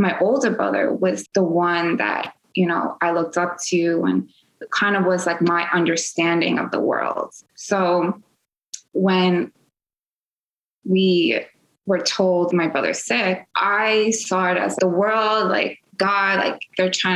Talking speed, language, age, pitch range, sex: 145 wpm, English, 20-39, 175-200 Hz, female